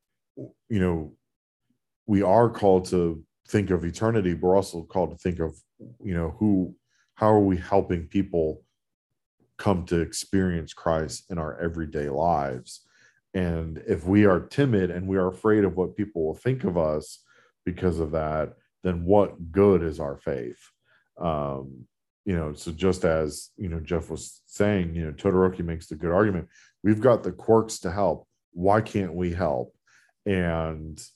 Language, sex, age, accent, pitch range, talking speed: English, male, 40-59, American, 80-95 Hz, 165 wpm